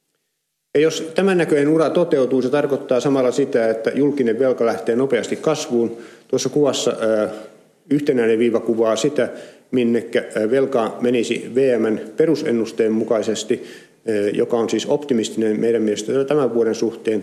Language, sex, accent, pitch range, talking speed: Finnish, male, native, 110-135 Hz, 130 wpm